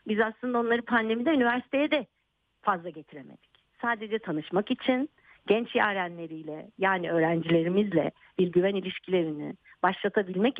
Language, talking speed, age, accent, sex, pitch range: Turkish, 115 wpm, 50-69, native, female, 175-255 Hz